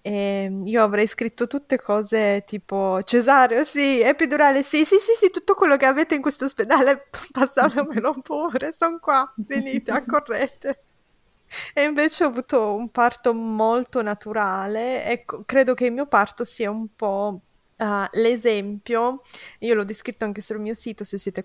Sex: female